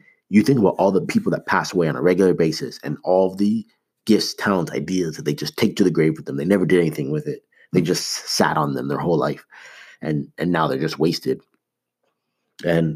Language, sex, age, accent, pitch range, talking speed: English, male, 30-49, American, 80-105 Hz, 230 wpm